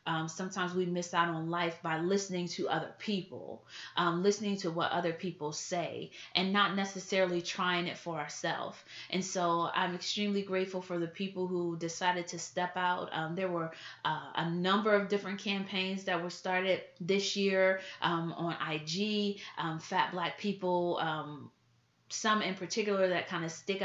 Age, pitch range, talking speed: 30-49, 175-200 Hz, 175 wpm